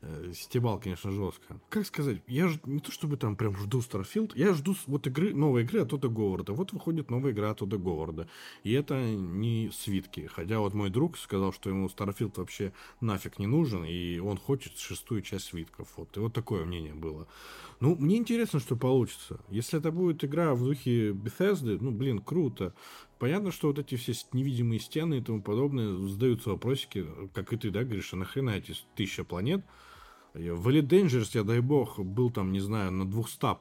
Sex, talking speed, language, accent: male, 185 wpm, Russian, native